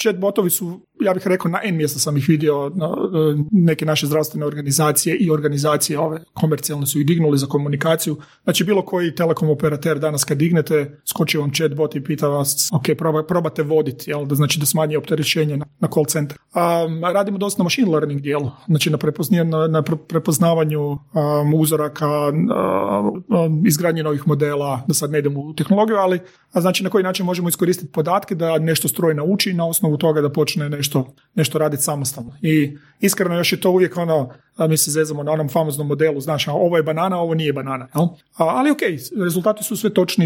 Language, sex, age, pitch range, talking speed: Croatian, male, 30-49, 150-180 Hz, 195 wpm